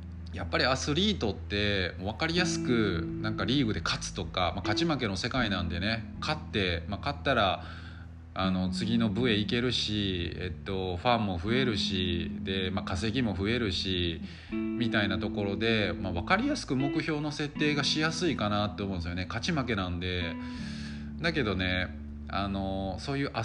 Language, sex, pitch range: Japanese, male, 90-115 Hz